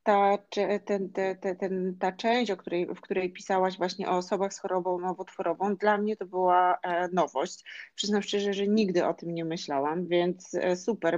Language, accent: Polish, native